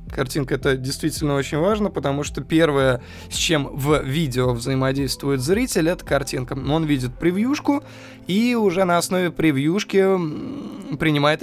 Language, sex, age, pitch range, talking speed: Russian, male, 20-39, 130-165 Hz, 130 wpm